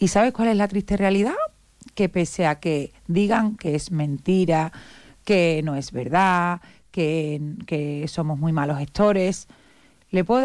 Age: 40-59